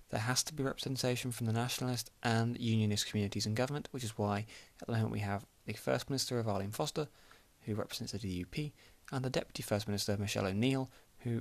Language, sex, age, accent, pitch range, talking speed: English, male, 20-39, British, 105-140 Hz, 210 wpm